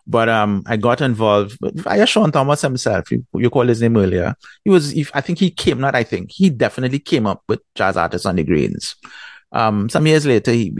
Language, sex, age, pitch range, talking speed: English, male, 30-49, 95-120 Hz, 220 wpm